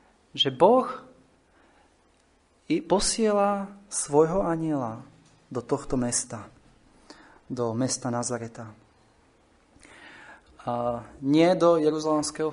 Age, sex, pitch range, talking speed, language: 30-49, male, 125-155 Hz, 70 wpm, Slovak